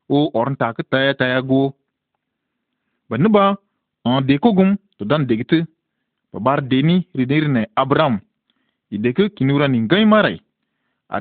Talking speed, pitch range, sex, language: 150 wpm, 130-185 Hz, male, Arabic